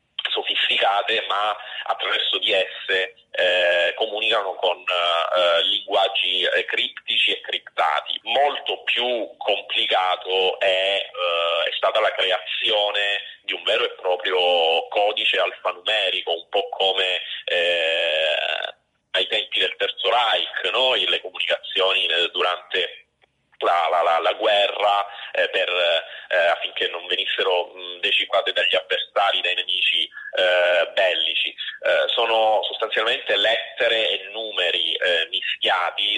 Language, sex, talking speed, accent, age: Italian, male, 110 wpm, native, 30-49